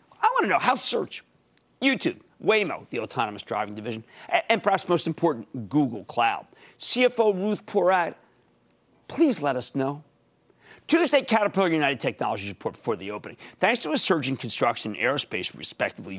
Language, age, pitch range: English, 50-69, 130-205 Hz